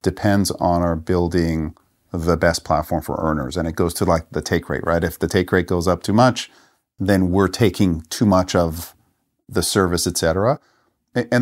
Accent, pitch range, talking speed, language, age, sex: American, 85-110 Hz, 195 wpm, English, 40-59, male